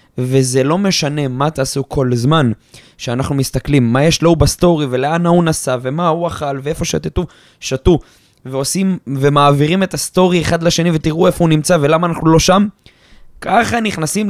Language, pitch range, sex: Hebrew, 130-180 Hz, male